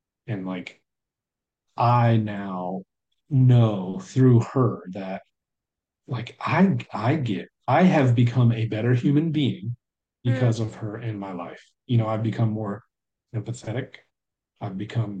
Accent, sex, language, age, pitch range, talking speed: American, male, English, 40-59, 105-125 Hz, 130 wpm